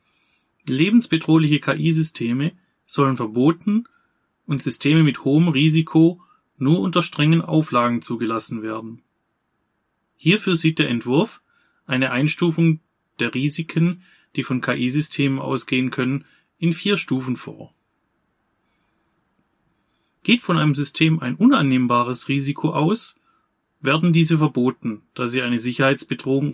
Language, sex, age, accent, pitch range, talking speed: German, male, 30-49, German, 125-165 Hz, 105 wpm